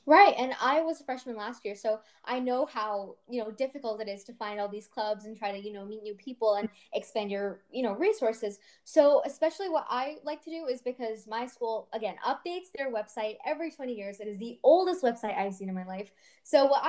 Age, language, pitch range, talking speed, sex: 10-29, English, 215-275 Hz, 235 wpm, female